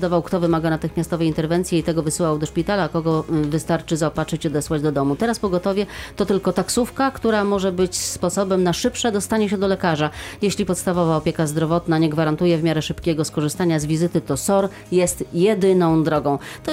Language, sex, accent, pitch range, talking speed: Polish, female, native, 160-200 Hz, 185 wpm